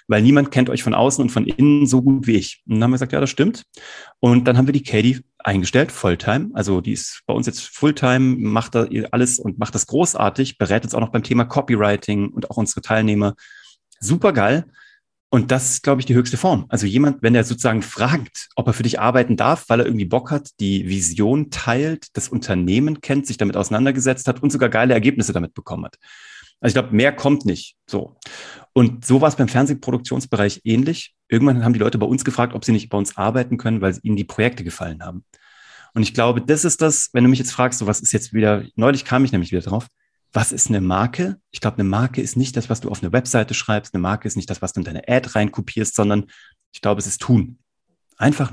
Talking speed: 235 wpm